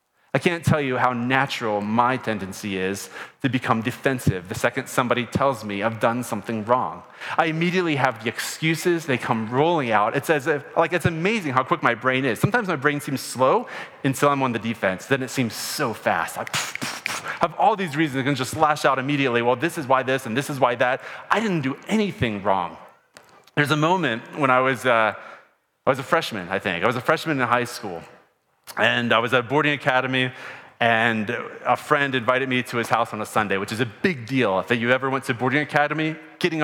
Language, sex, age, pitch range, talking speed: English, male, 30-49, 115-145 Hz, 220 wpm